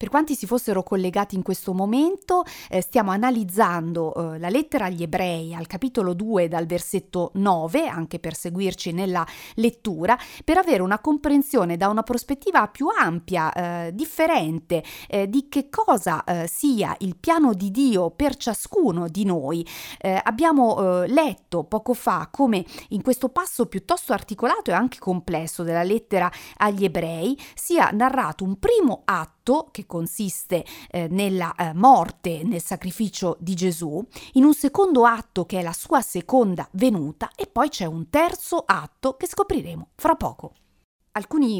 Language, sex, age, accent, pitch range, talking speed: Italian, female, 40-59, native, 175-240 Hz, 150 wpm